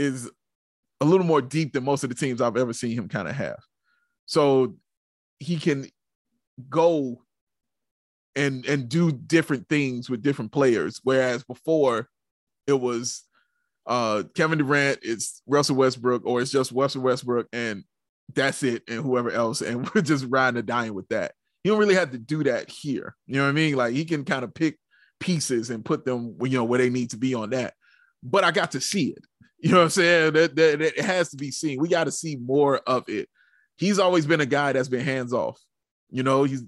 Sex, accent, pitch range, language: male, American, 120-150 Hz, English